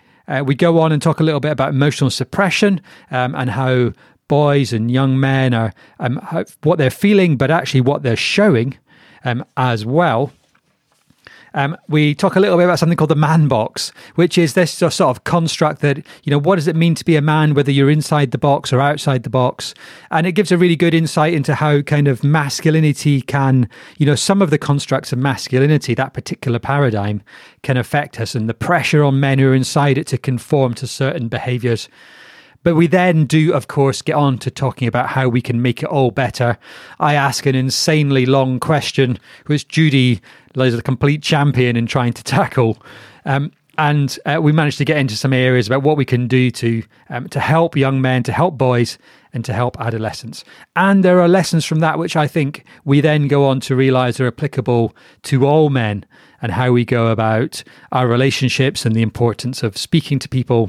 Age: 30-49